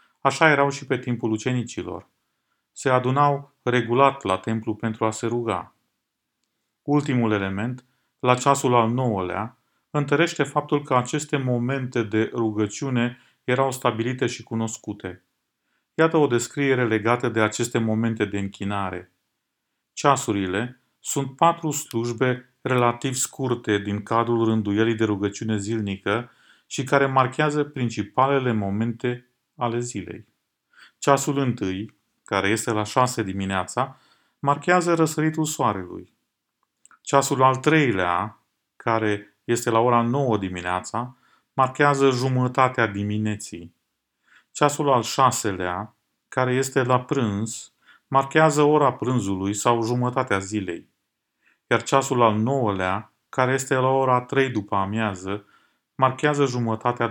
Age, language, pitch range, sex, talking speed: 40-59, Romanian, 110-135 Hz, male, 115 wpm